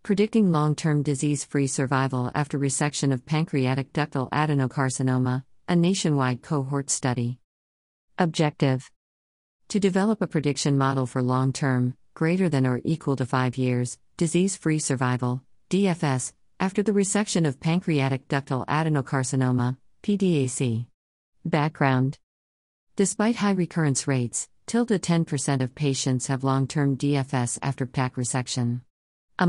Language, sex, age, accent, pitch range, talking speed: English, female, 50-69, American, 130-160 Hz, 115 wpm